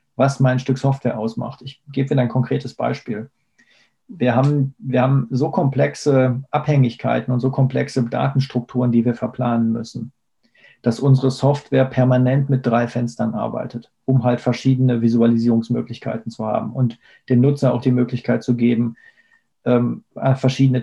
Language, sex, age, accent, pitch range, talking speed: German, male, 40-59, German, 125-140 Hz, 140 wpm